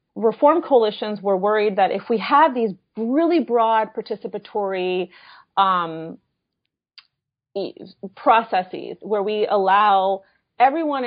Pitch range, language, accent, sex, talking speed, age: 190-235 Hz, English, American, female, 100 wpm, 30-49